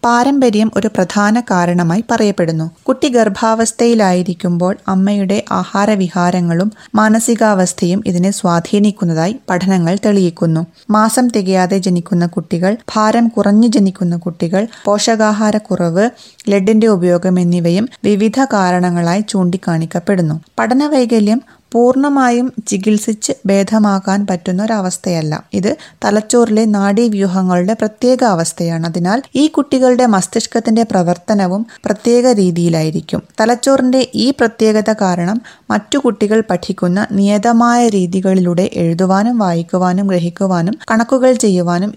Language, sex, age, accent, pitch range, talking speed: Malayalam, female, 20-39, native, 180-225 Hz, 85 wpm